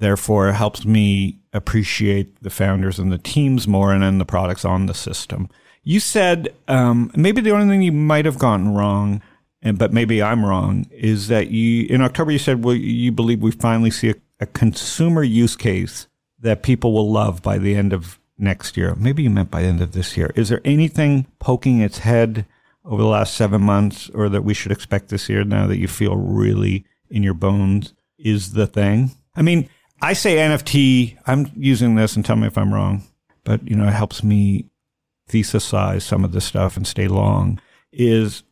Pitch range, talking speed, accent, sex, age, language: 100-120 Hz, 205 wpm, American, male, 50-69, English